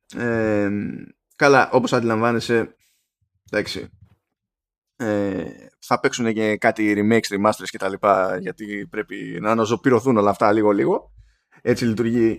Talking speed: 115 wpm